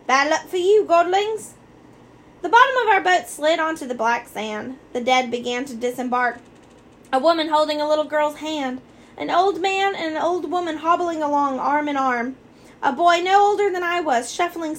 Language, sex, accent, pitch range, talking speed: English, female, American, 250-330 Hz, 190 wpm